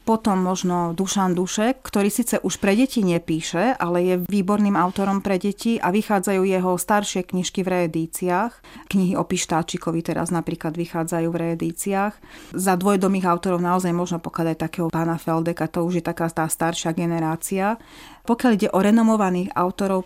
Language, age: Czech, 30-49